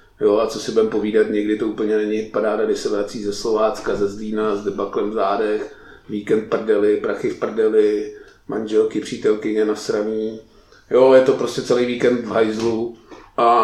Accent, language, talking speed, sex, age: native, Czech, 165 wpm, male, 30-49